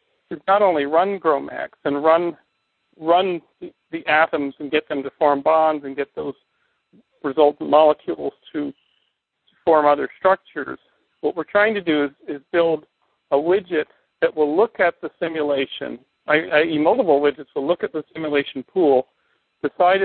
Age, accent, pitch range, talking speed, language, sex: 50-69, American, 150-180 Hz, 160 wpm, English, male